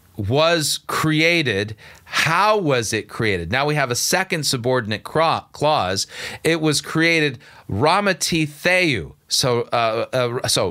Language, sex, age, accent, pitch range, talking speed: English, male, 40-59, American, 105-150 Hz, 110 wpm